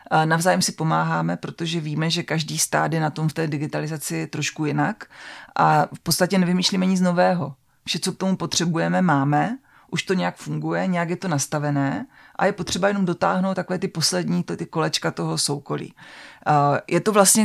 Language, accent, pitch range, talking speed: Czech, native, 155-185 Hz, 180 wpm